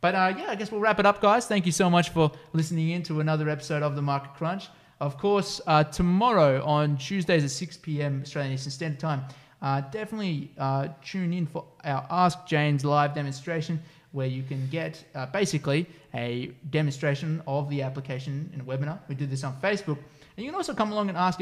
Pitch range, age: 135-170 Hz, 20-39